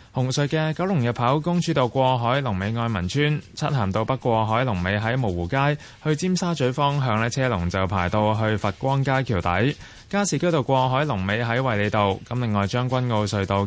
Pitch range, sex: 105-140 Hz, male